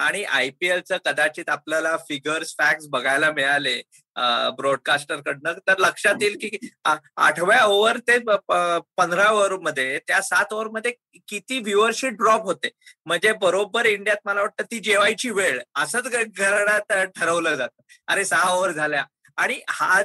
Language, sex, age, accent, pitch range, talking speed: Marathi, male, 20-39, native, 170-220 Hz, 130 wpm